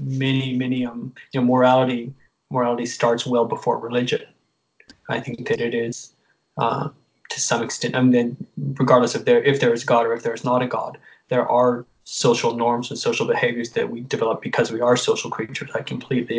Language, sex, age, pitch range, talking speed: English, male, 20-39, 120-130 Hz, 195 wpm